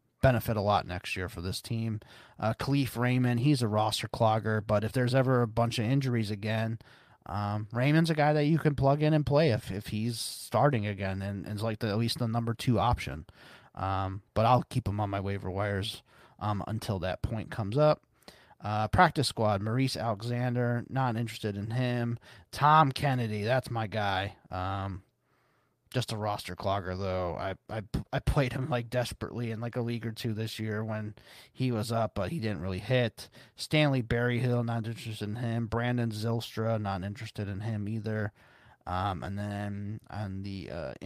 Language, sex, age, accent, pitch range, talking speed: English, male, 30-49, American, 105-125 Hz, 190 wpm